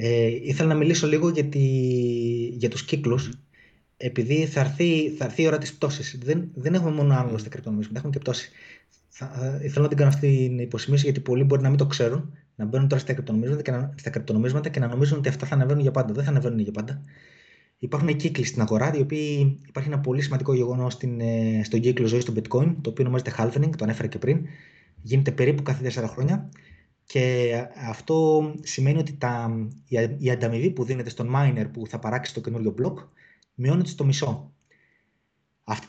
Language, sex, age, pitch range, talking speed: Greek, male, 20-39, 120-150 Hz, 180 wpm